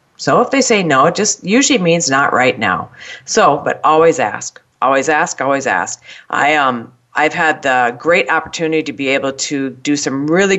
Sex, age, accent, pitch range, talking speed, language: female, 40-59, American, 140-230 Hz, 200 wpm, English